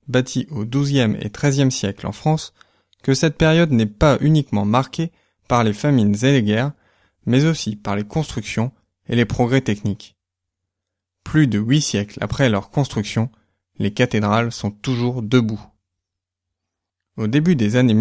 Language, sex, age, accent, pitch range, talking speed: French, male, 20-39, French, 105-140 Hz, 155 wpm